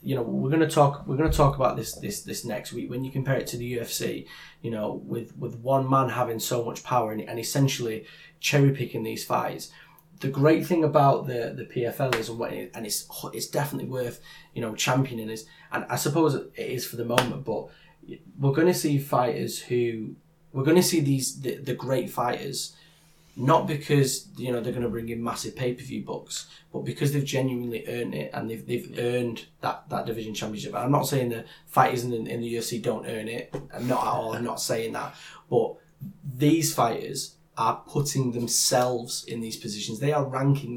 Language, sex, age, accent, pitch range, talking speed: English, male, 10-29, British, 115-145 Hz, 210 wpm